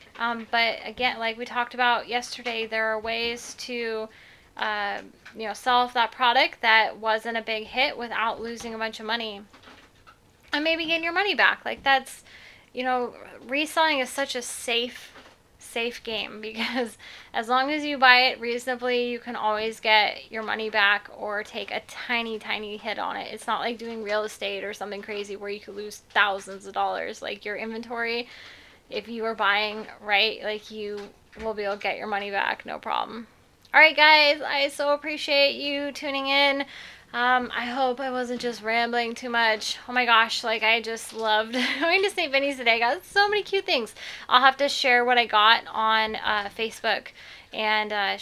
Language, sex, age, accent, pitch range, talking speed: English, female, 10-29, American, 220-275 Hz, 190 wpm